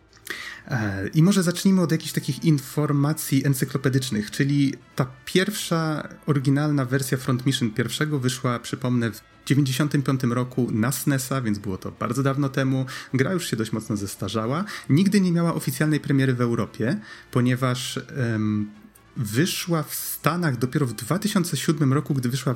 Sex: male